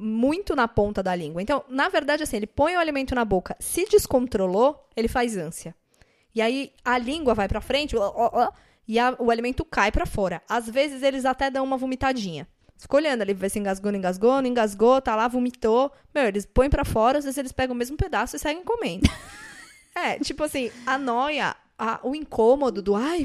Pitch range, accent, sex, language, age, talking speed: 225-275 Hz, Brazilian, female, Portuguese, 10-29, 205 wpm